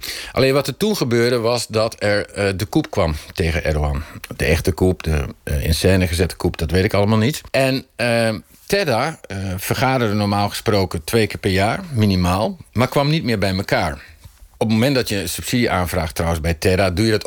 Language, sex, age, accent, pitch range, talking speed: Dutch, male, 50-69, Dutch, 90-120 Hz, 210 wpm